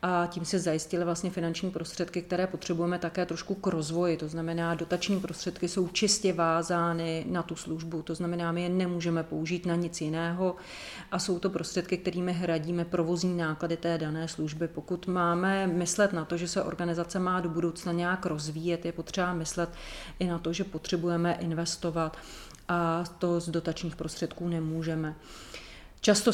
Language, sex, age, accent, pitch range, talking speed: Czech, female, 30-49, native, 165-180 Hz, 160 wpm